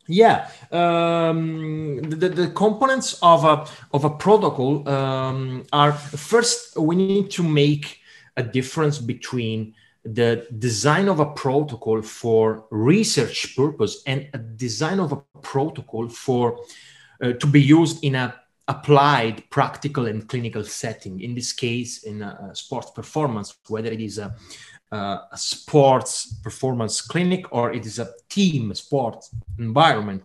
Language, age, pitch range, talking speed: English, 30-49, 115-150 Hz, 140 wpm